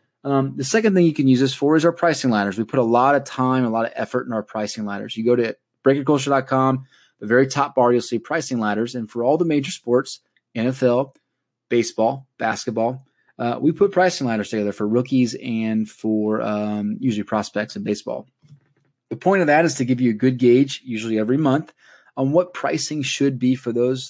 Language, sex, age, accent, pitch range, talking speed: English, male, 20-39, American, 110-135 Hz, 210 wpm